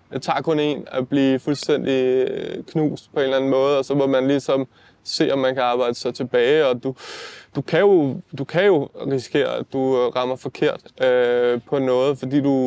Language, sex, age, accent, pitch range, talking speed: Danish, male, 20-39, native, 130-160 Hz, 205 wpm